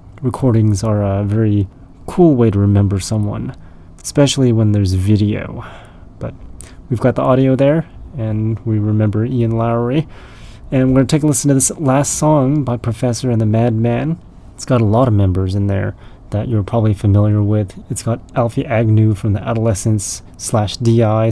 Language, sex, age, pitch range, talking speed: English, male, 30-49, 105-125 Hz, 175 wpm